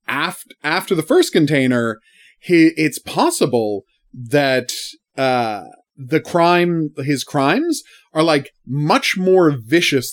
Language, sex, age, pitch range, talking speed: English, male, 30-49, 125-170 Hz, 105 wpm